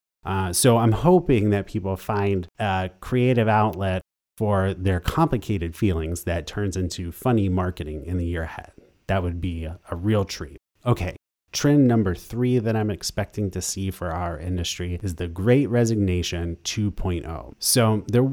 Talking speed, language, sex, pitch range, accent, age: 155 wpm, English, male, 90-120 Hz, American, 30-49